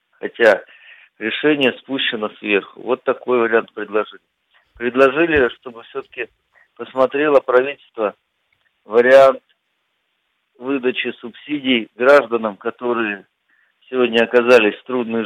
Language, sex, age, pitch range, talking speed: Russian, male, 50-69, 115-140 Hz, 85 wpm